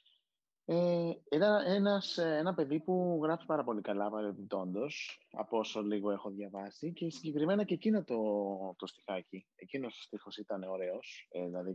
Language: Greek